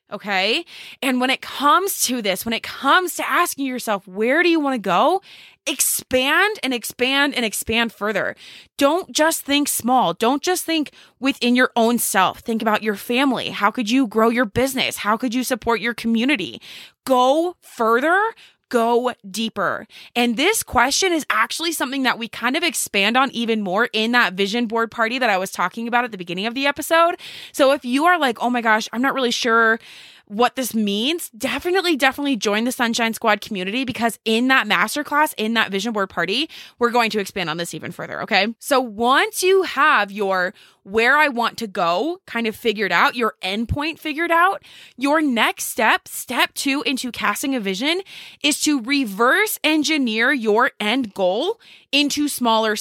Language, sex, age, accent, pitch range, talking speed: English, female, 20-39, American, 220-285 Hz, 185 wpm